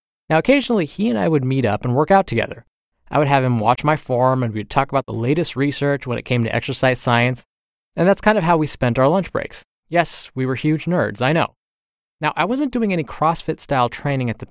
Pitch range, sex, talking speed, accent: 120-160 Hz, male, 240 wpm, American